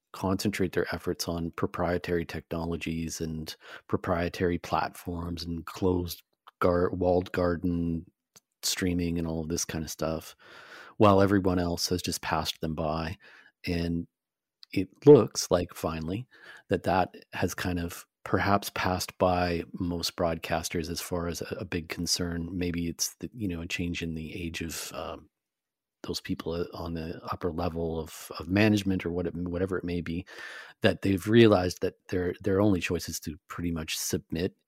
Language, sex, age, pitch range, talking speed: English, male, 40-59, 85-95 Hz, 155 wpm